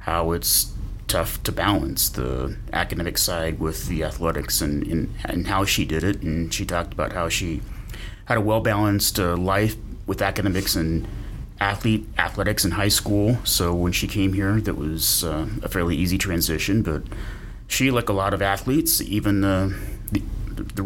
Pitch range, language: 90-105 Hz, English